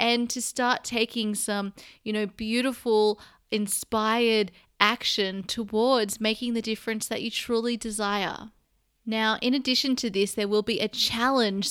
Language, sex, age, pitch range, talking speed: English, female, 20-39, 200-240 Hz, 145 wpm